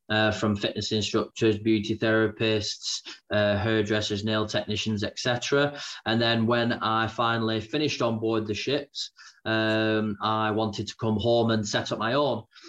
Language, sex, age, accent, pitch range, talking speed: English, male, 20-39, British, 110-125 Hz, 150 wpm